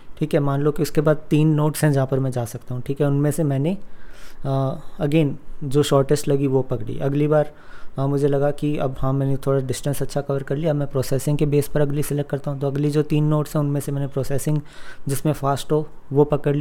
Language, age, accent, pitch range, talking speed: Hindi, 20-39, native, 135-155 Hz, 240 wpm